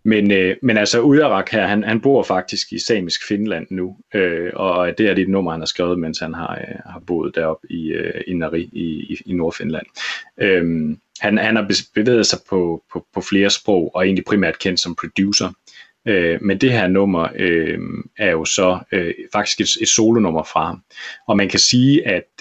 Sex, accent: male, native